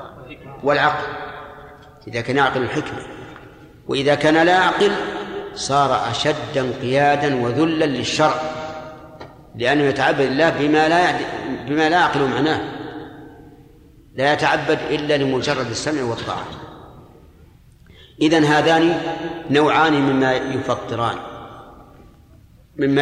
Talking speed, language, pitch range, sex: 95 wpm, Arabic, 130-155 Hz, male